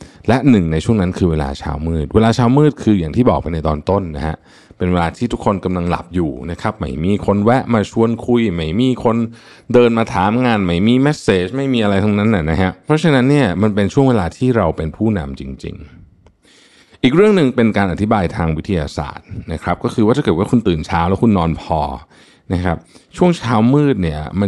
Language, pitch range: Thai, 80-115 Hz